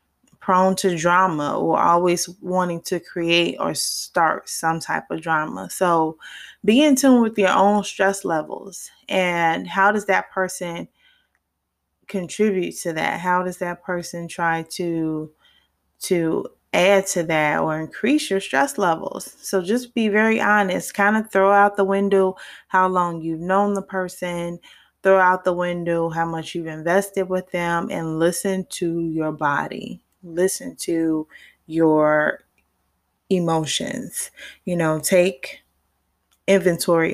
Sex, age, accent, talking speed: female, 20-39, American, 140 wpm